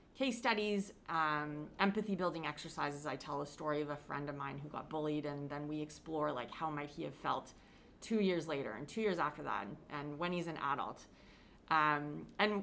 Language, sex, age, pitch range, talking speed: English, female, 30-49, 150-195 Hz, 210 wpm